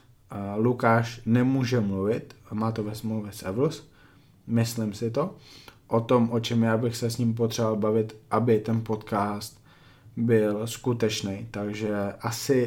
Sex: male